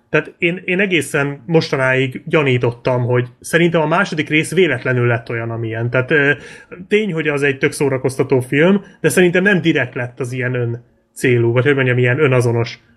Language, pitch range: Hungarian, 125-160 Hz